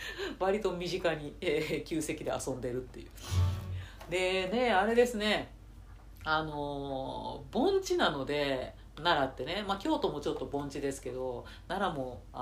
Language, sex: Japanese, female